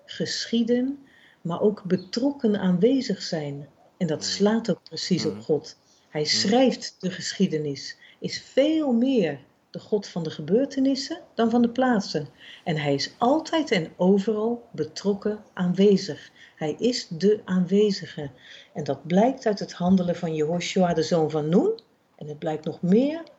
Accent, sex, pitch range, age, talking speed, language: Dutch, female, 165-230 Hz, 50-69, 150 wpm, Dutch